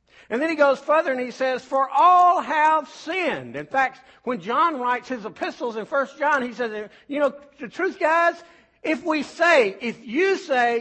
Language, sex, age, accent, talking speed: English, male, 60-79, American, 195 wpm